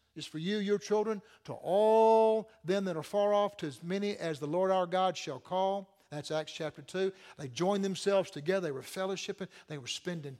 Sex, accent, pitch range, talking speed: male, American, 160-205 Hz, 210 wpm